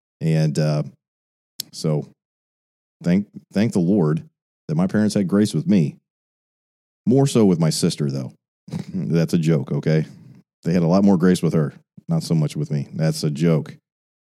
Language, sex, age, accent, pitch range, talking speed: English, male, 40-59, American, 75-95 Hz, 170 wpm